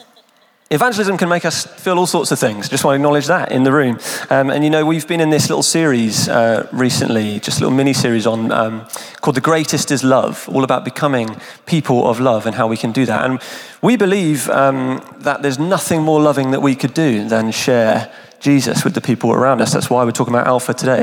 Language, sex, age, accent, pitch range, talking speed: English, male, 30-49, British, 125-155 Hz, 230 wpm